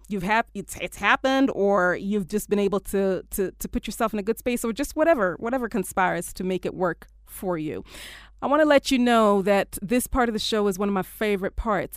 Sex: female